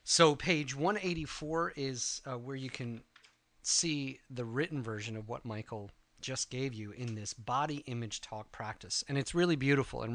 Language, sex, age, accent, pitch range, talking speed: English, male, 30-49, American, 115-150 Hz, 170 wpm